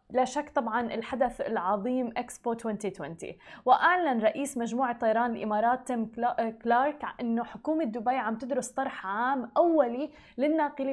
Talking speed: 125 wpm